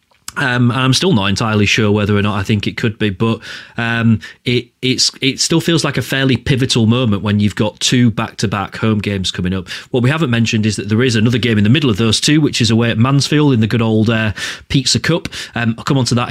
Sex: male